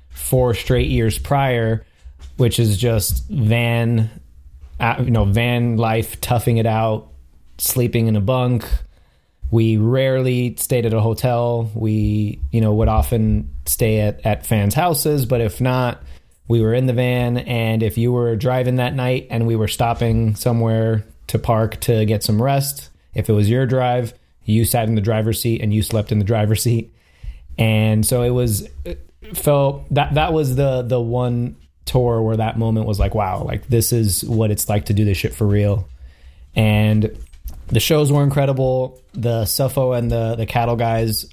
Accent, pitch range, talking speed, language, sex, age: American, 105-120 Hz, 175 wpm, English, male, 30-49